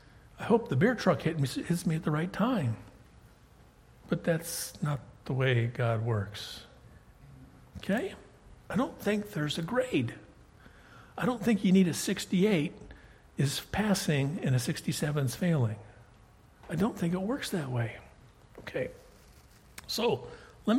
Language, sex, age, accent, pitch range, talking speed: English, male, 60-79, American, 130-190 Hz, 140 wpm